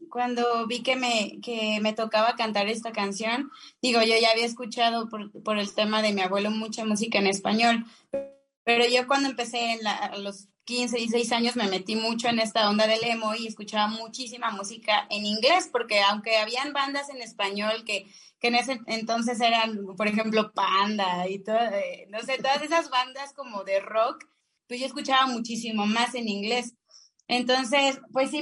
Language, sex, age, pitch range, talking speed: English, female, 20-39, 210-250 Hz, 185 wpm